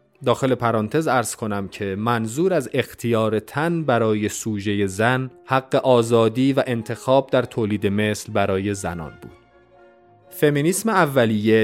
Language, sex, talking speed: Persian, male, 125 wpm